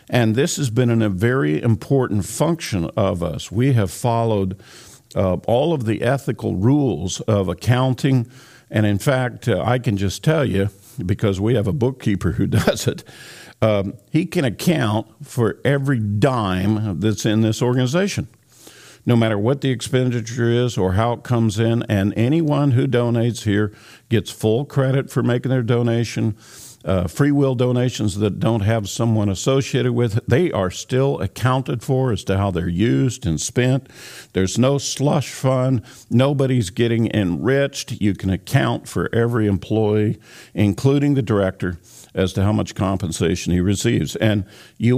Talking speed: 160 wpm